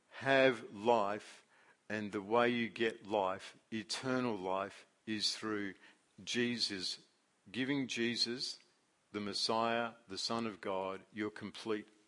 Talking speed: 115 wpm